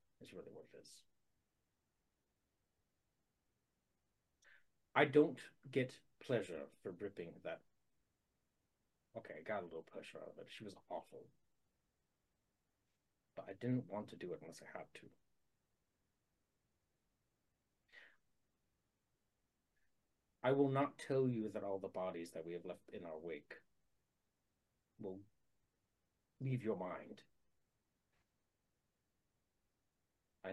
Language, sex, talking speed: English, male, 110 wpm